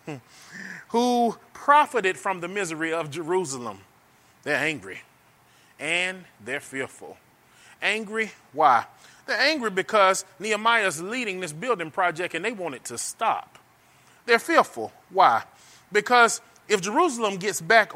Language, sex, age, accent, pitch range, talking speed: English, male, 30-49, American, 165-220 Hz, 120 wpm